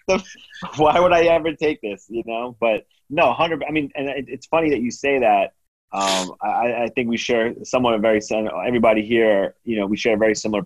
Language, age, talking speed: English, 30-49, 215 wpm